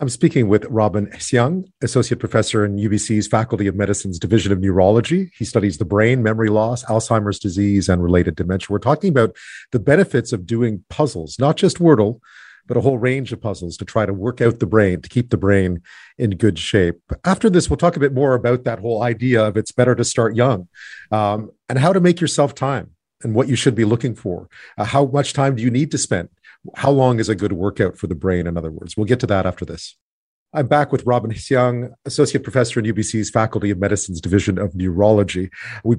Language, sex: English, male